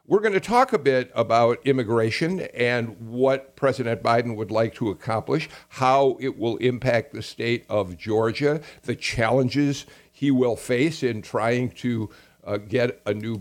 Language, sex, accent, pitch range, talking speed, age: English, male, American, 110-140 Hz, 160 wpm, 50-69